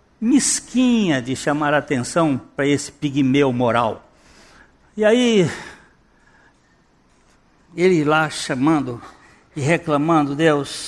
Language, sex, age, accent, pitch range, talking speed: Portuguese, male, 60-79, Brazilian, 145-245 Hz, 95 wpm